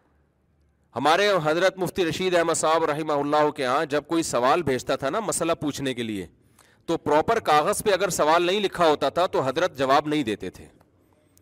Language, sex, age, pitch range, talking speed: Urdu, male, 40-59, 140-190 Hz, 190 wpm